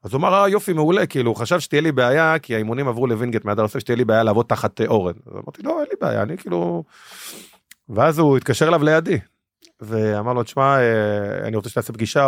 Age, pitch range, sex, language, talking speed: 30-49, 110-135 Hz, male, Hebrew, 215 wpm